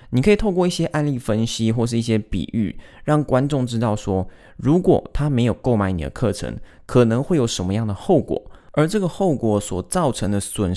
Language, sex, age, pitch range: Chinese, male, 20-39, 100-135 Hz